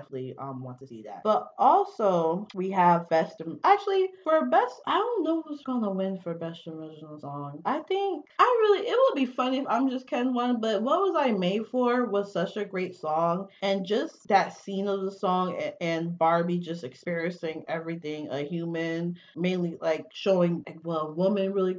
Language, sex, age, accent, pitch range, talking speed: English, female, 20-39, American, 165-245 Hz, 195 wpm